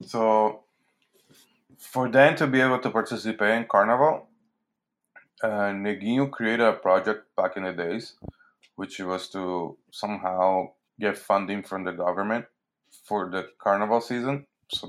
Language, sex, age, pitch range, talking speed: English, male, 20-39, 95-115 Hz, 135 wpm